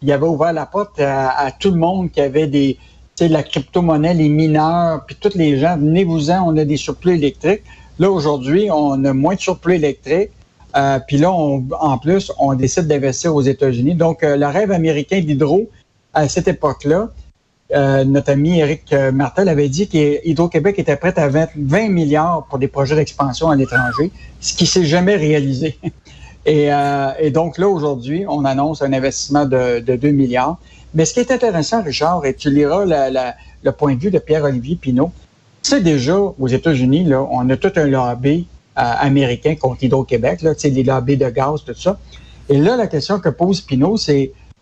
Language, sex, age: French, male, 60-79